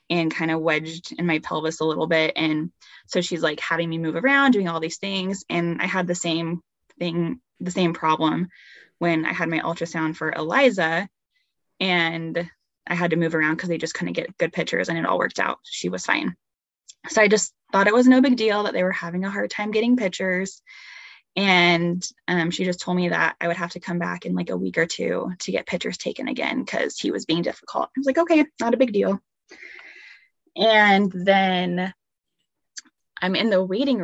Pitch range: 165-200 Hz